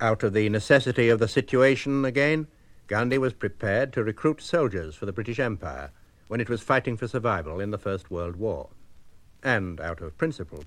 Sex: male